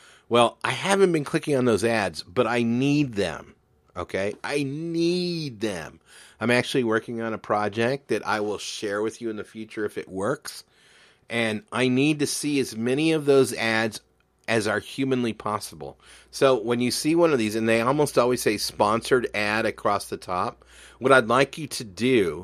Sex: male